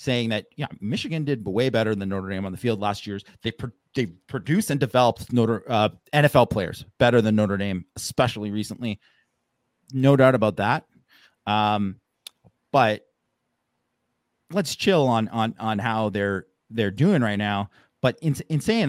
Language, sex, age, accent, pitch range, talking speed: English, male, 30-49, American, 105-130 Hz, 165 wpm